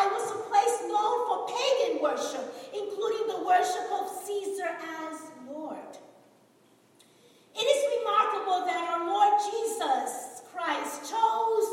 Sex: female